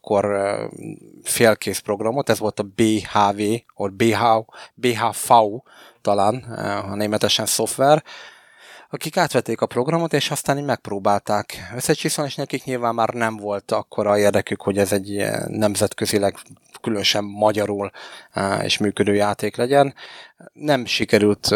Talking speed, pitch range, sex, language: 120 wpm, 105-120 Hz, male, Hungarian